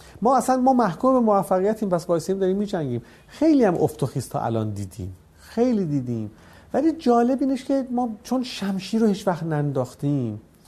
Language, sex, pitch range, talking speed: Persian, male, 125-175 Hz, 155 wpm